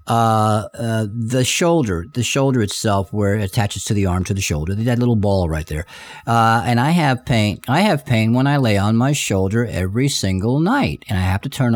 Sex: male